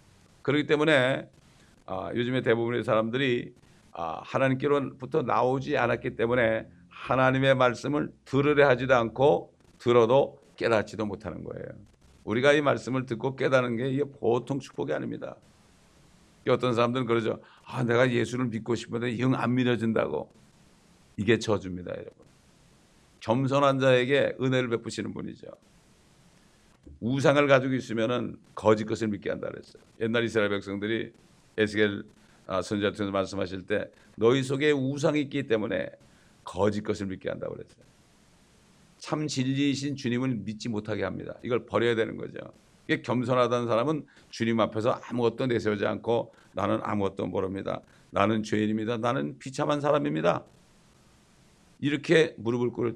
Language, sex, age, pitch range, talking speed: English, male, 60-79, 110-135 Hz, 115 wpm